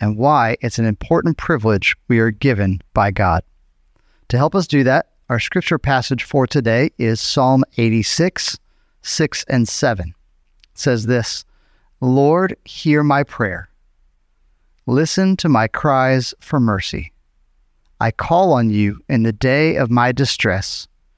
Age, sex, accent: 40-59, male, American